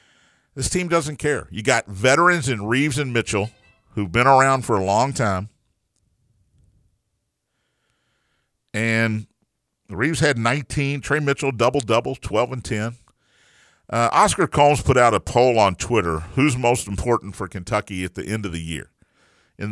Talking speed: 155 wpm